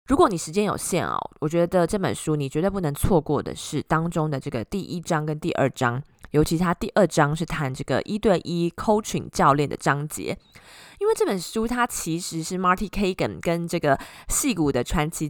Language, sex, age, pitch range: Chinese, female, 20-39, 145-180 Hz